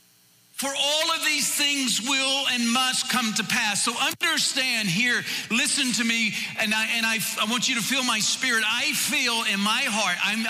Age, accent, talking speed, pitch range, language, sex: 50-69, American, 195 wpm, 175-250 Hz, English, male